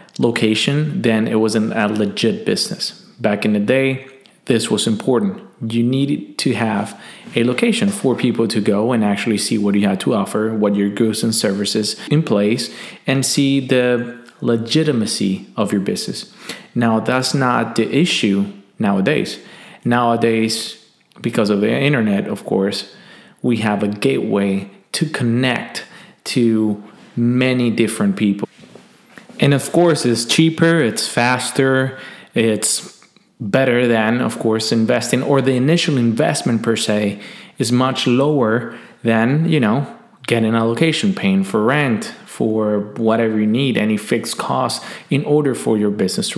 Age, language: 30-49, English